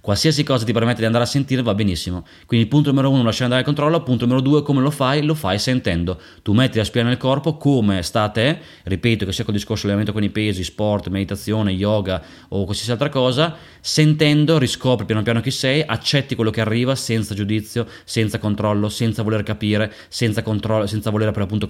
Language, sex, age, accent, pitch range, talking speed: Italian, male, 20-39, native, 105-130 Hz, 205 wpm